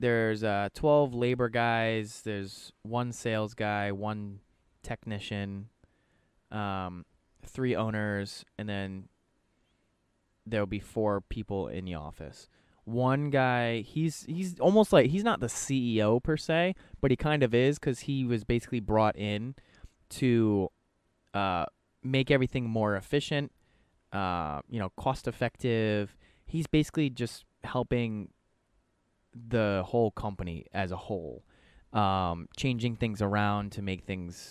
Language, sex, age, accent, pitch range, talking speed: English, male, 20-39, American, 95-120 Hz, 130 wpm